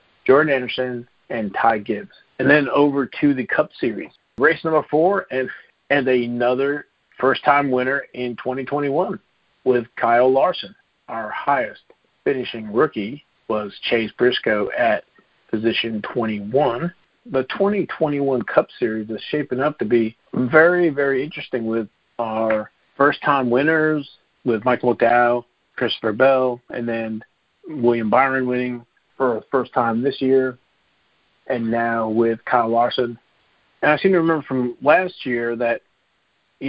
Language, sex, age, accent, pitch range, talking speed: English, male, 50-69, American, 120-140 Hz, 135 wpm